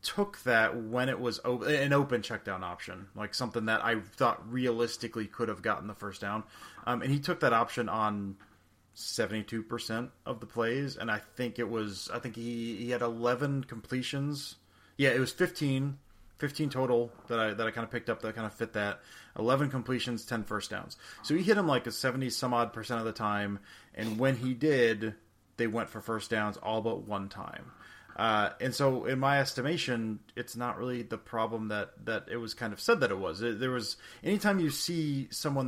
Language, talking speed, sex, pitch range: English, 205 wpm, male, 110-130 Hz